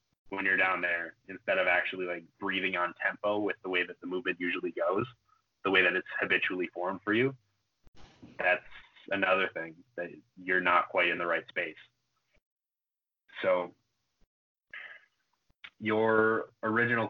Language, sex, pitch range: Italian, male, 100-120 Hz